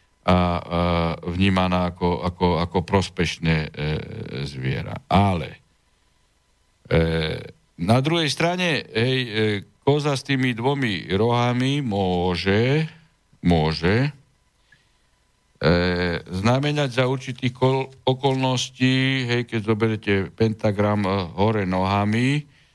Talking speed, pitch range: 95 wpm, 90-115 Hz